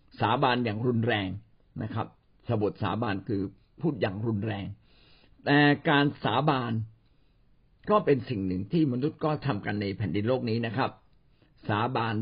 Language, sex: Thai, male